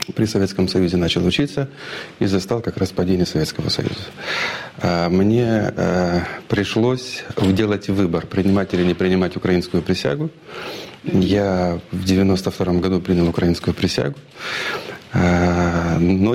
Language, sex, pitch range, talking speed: Russian, male, 90-115 Hz, 110 wpm